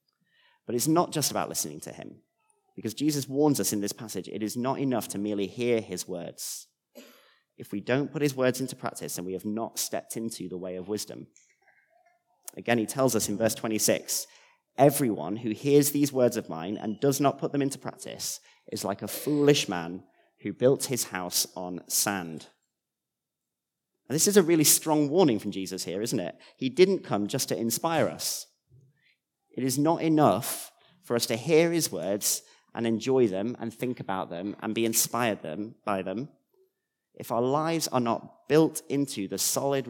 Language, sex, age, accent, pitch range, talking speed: English, male, 30-49, British, 105-145 Hz, 185 wpm